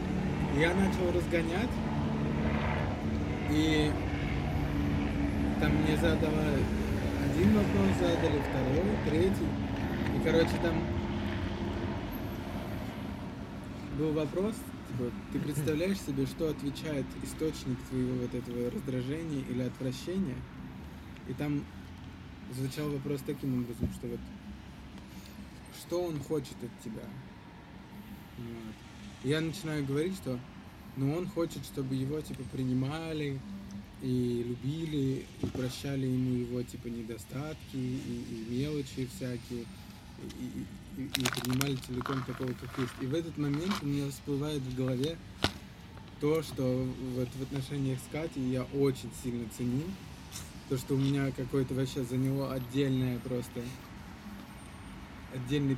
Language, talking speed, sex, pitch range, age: Russian, 115 wpm, male, 95-140 Hz, 20-39